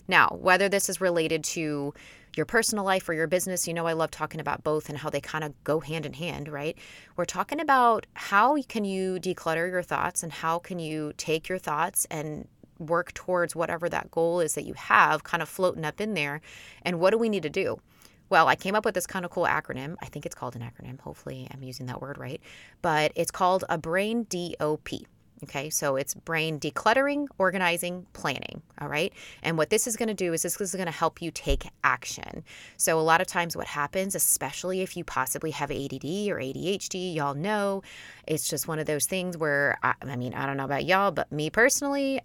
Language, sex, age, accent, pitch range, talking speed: English, female, 20-39, American, 150-185 Hz, 225 wpm